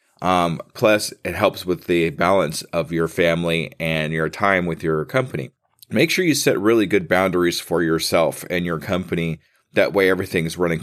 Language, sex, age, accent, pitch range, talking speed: English, male, 30-49, American, 85-105 Hz, 175 wpm